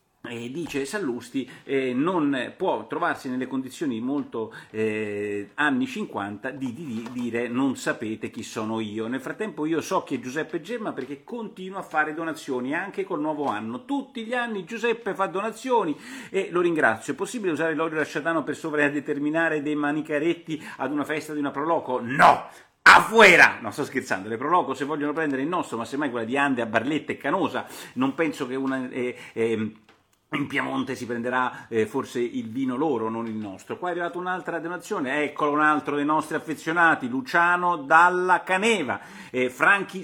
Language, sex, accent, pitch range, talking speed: Italian, male, native, 125-180 Hz, 180 wpm